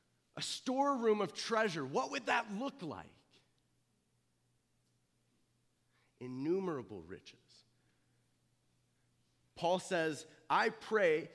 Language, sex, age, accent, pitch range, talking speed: English, male, 30-49, American, 140-215 Hz, 80 wpm